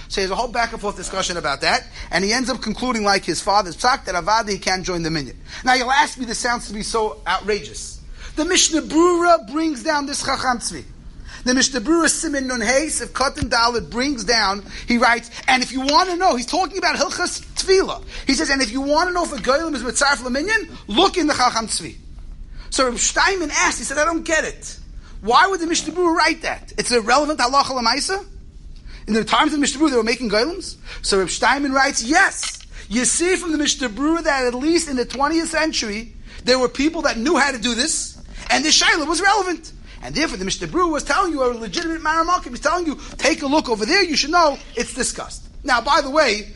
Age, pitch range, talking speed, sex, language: 30-49, 235-320 Hz, 220 wpm, male, English